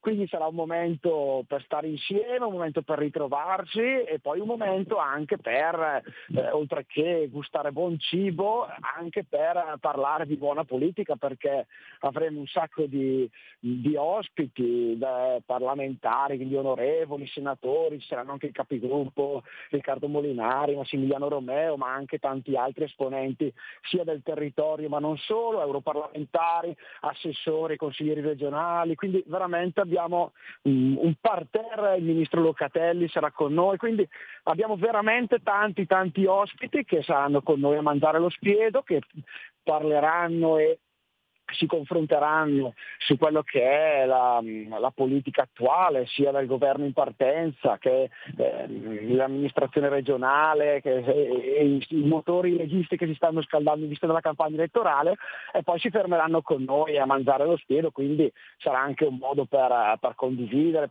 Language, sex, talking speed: Italian, male, 145 wpm